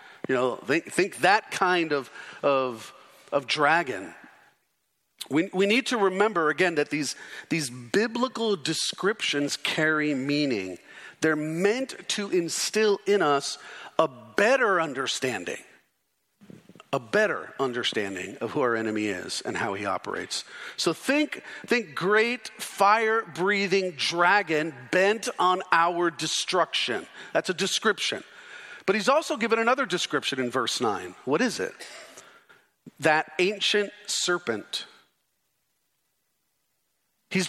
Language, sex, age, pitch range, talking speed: English, male, 40-59, 160-215 Hz, 120 wpm